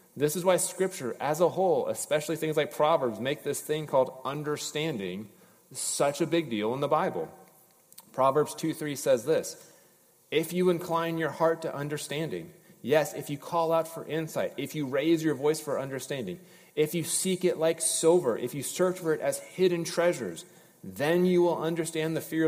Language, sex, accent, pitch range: English, male, American, 145-170 Hz